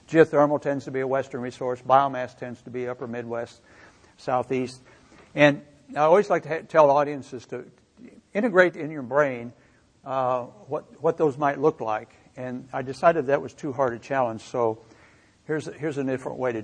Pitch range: 125-150 Hz